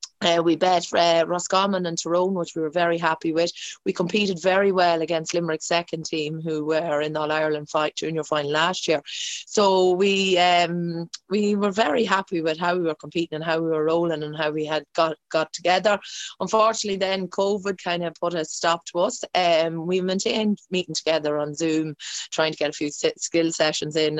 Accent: Irish